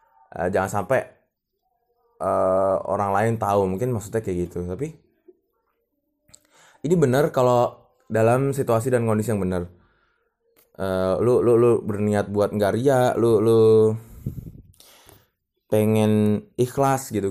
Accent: native